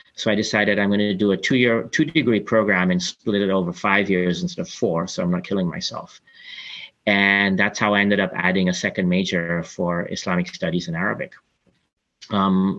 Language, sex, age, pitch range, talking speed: English, male, 30-49, 90-115 Hz, 205 wpm